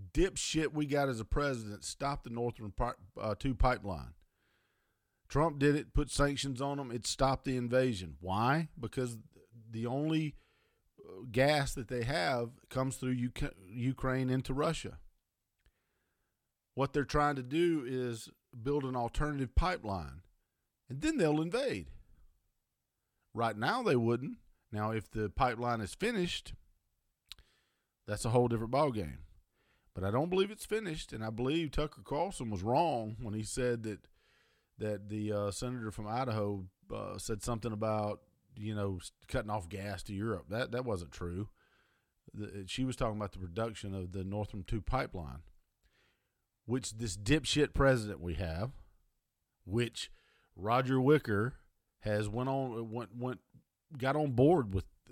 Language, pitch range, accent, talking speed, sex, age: English, 100-135 Hz, American, 145 wpm, male, 50-69